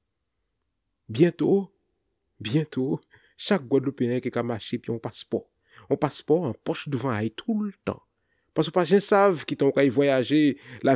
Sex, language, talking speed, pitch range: male, French, 160 wpm, 120-160 Hz